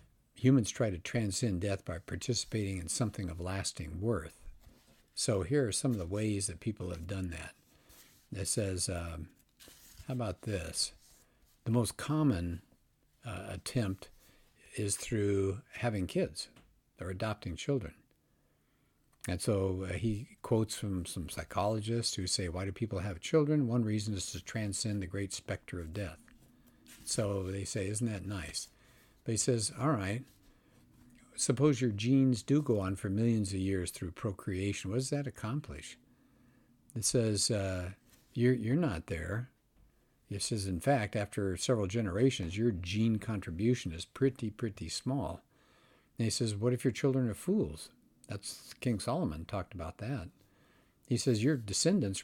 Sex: male